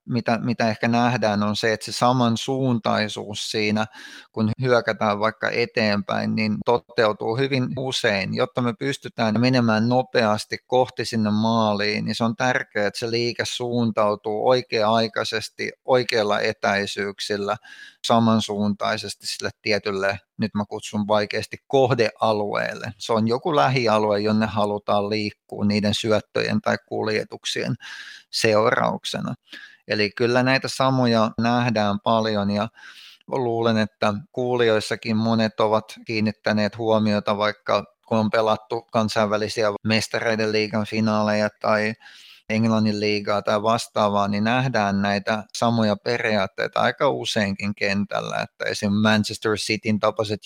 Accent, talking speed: native, 115 wpm